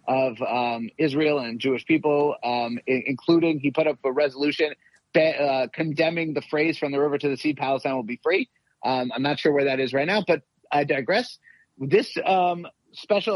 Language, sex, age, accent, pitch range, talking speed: English, male, 30-49, American, 135-165 Hz, 200 wpm